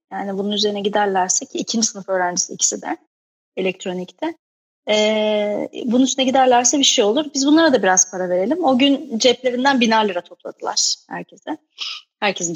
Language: Turkish